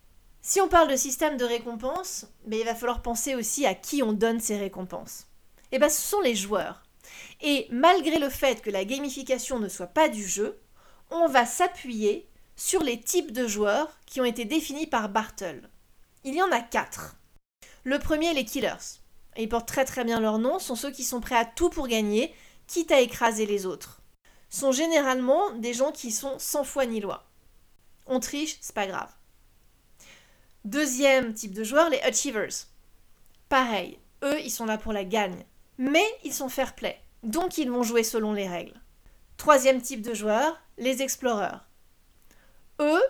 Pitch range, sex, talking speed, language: 220-285 Hz, female, 180 wpm, French